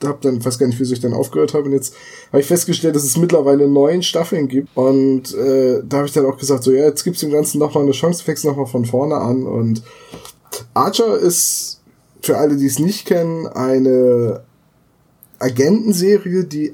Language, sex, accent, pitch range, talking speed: German, male, German, 130-165 Hz, 210 wpm